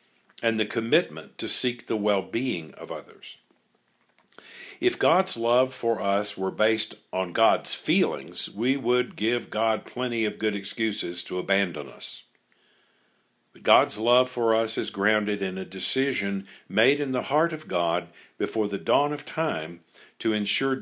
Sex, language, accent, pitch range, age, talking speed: male, English, American, 100-120 Hz, 50-69, 155 wpm